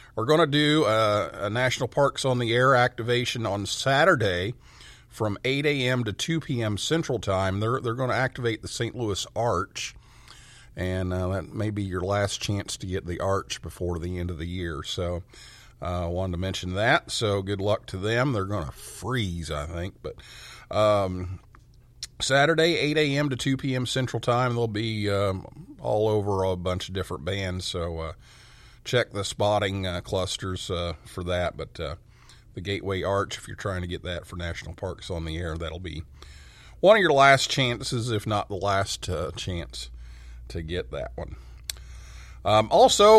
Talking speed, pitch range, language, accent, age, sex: 185 wpm, 90-125 Hz, English, American, 50-69, male